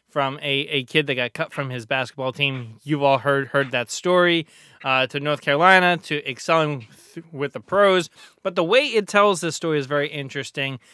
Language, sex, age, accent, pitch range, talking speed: English, male, 20-39, American, 140-170 Hz, 200 wpm